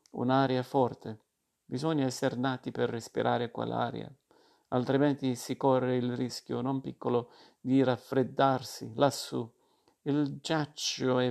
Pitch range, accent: 120-135 Hz, native